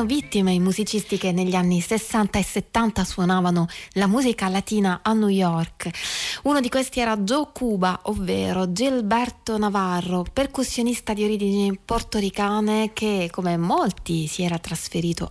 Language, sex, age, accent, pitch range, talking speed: Italian, female, 20-39, native, 170-205 Hz, 135 wpm